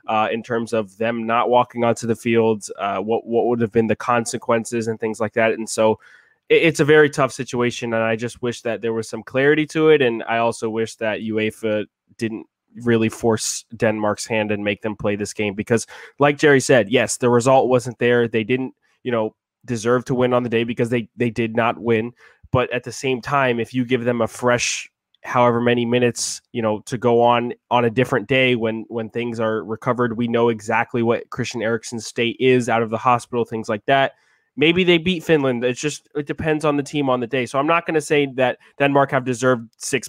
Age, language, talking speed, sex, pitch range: 20-39, English, 225 wpm, male, 110-125 Hz